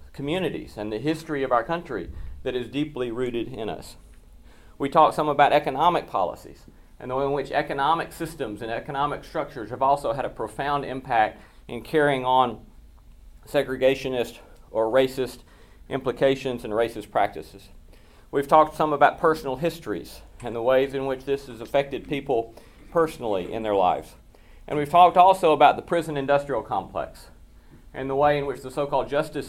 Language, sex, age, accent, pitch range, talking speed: English, male, 40-59, American, 110-145 Hz, 165 wpm